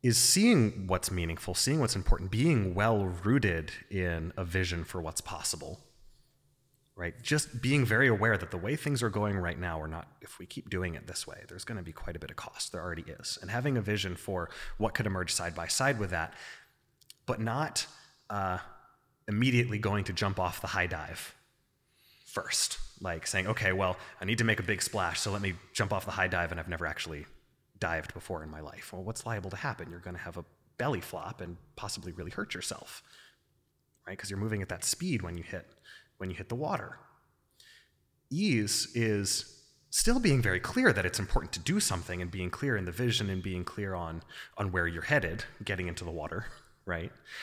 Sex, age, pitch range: male, 30-49, 90-120 Hz